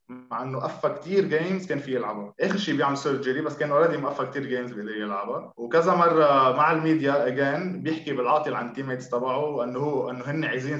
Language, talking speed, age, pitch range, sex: Arabic, 195 wpm, 20-39, 125-155 Hz, male